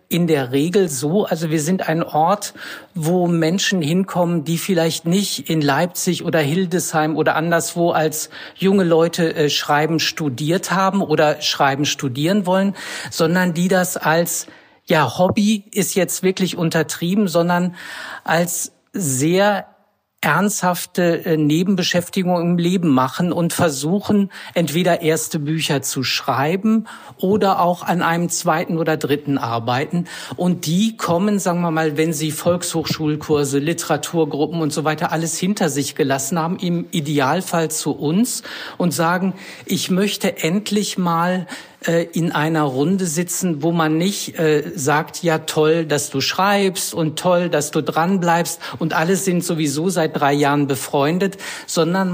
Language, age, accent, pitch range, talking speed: German, 50-69, German, 155-185 Hz, 135 wpm